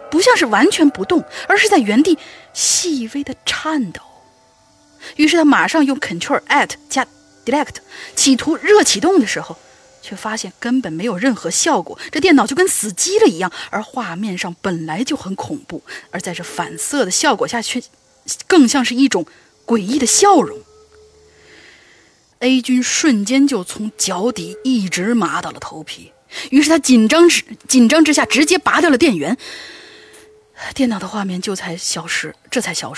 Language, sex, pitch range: Chinese, female, 205-300 Hz